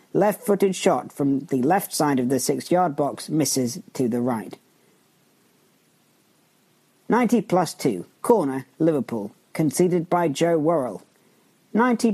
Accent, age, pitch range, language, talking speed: British, 50-69, 140-195 Hz, English, 120 wpm